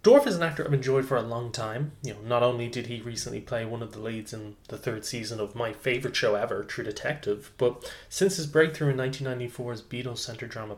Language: English